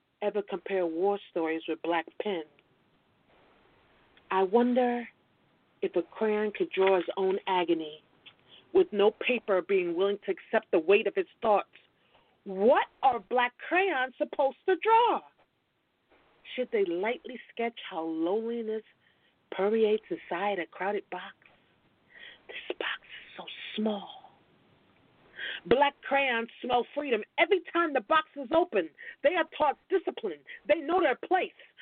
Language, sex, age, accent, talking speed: English, female, 40-59, American, 130 wpm